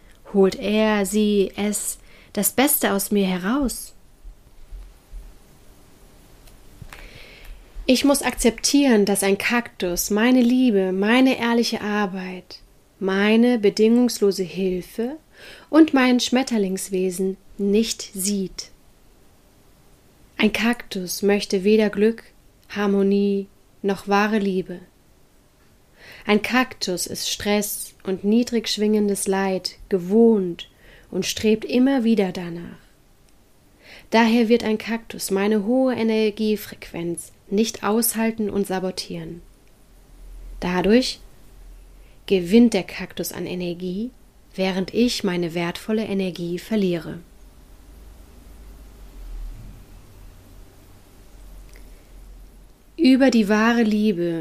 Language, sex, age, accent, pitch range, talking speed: German, female, 30-49, German, 180-225 Hz, 85 wpm